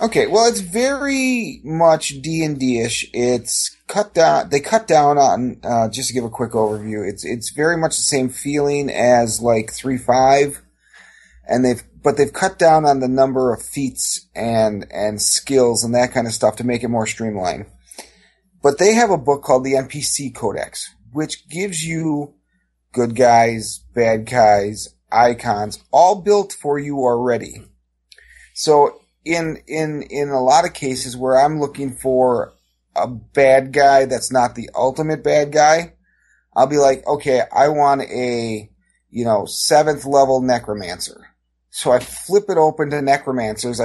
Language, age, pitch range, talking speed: English, 30-49, 120-150 Hz, 165 wpm